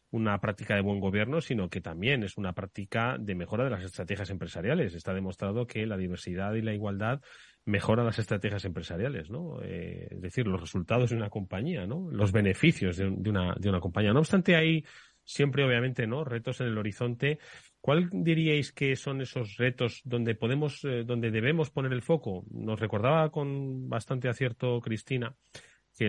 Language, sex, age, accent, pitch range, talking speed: Spanish, male, 30-49, Spanish, 100-130 Hz, 170 wpm